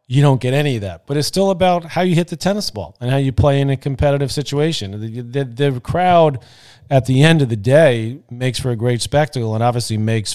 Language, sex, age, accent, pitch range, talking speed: English, male, 40-59, American, 105-120 Hz, 245 wpm